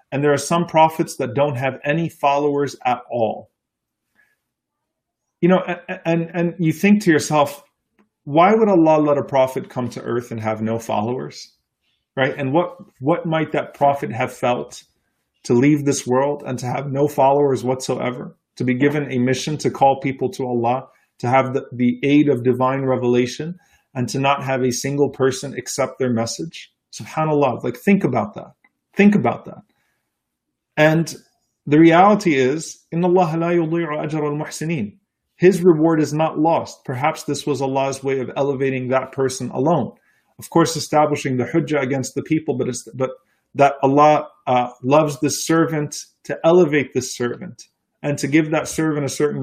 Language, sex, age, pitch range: English, male, 30-49, 130-160 Hz